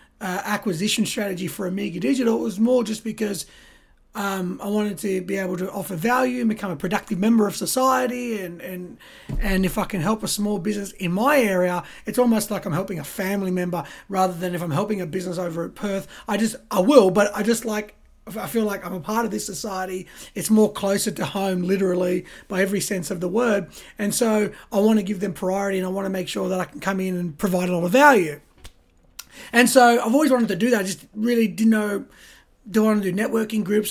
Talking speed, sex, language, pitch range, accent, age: 230 wpm, male, English, 185-220 Hz, Australian, 30-49